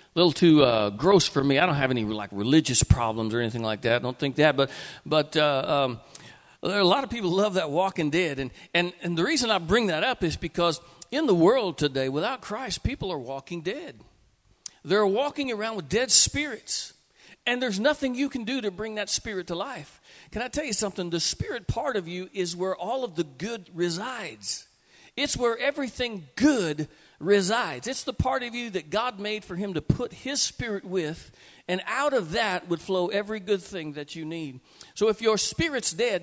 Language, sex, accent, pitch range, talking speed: English, male, American, 155-220 Hz, 215 wpm